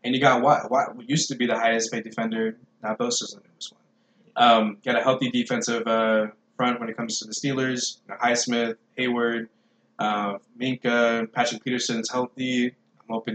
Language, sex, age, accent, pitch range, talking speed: English, male, 20-39, American, 110-125 Hz, 180 wpm